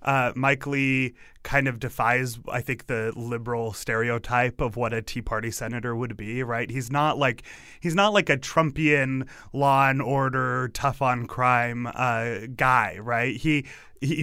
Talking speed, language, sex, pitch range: 165 wpm, English, male, 120-145 Hz